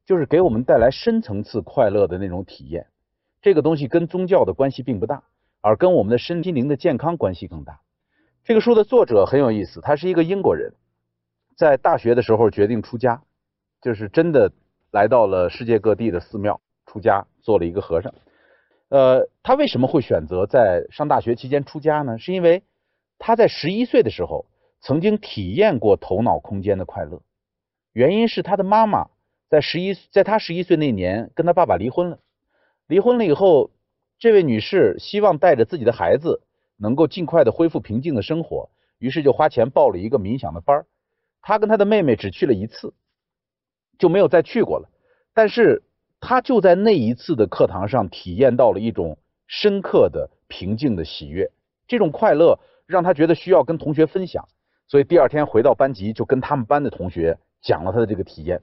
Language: Chinese